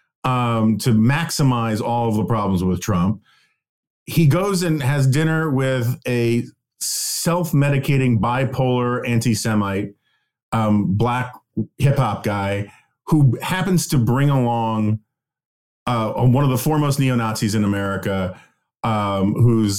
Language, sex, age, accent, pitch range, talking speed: English, male, 40-59, American, 110-140 Hz, 120 wpm